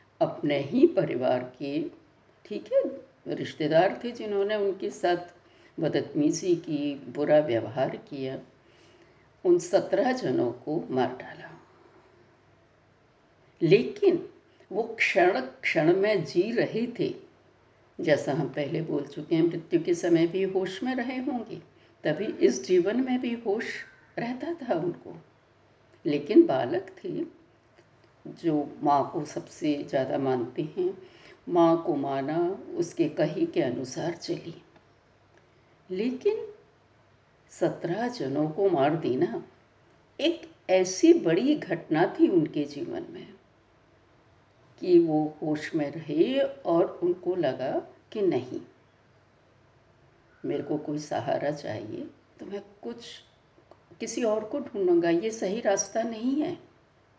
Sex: female